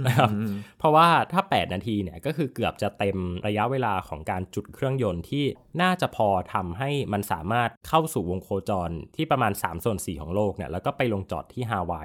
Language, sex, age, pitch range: Thai, male, 20-39, 100-130 Hz